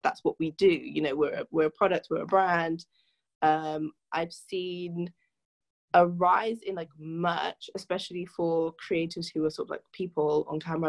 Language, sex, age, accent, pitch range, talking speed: English, female, 20-39, British, 165-195 Hz, 175 wpm